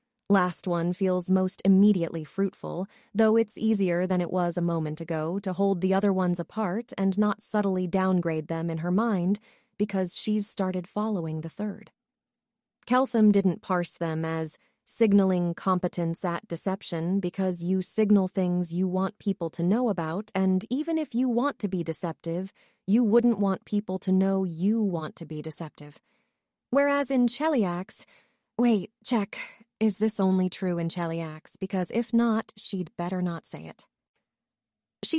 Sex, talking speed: female, 160 wpm